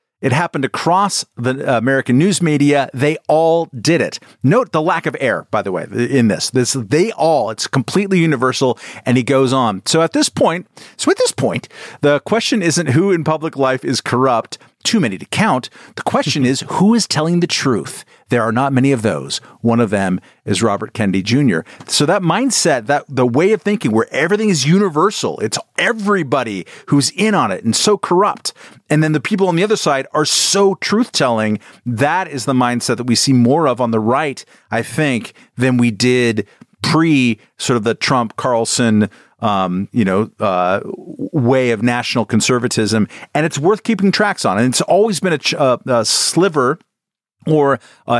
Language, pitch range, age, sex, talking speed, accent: English, 120-165 Hz, 40-59, male, 190 wpm, American